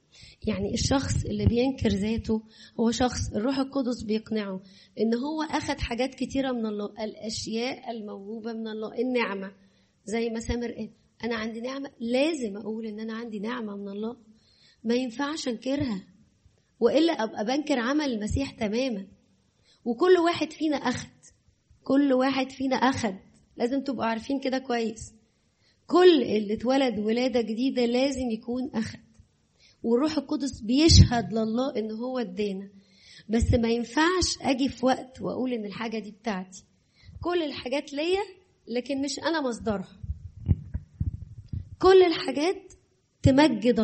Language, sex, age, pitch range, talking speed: Arabic, female, 20-39, 220-275 Hz, 130 wpm